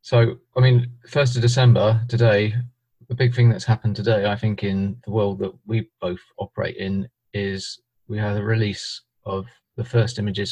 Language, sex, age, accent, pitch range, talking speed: English, male, 30-49, British, 95-120 Hz, 185 wpm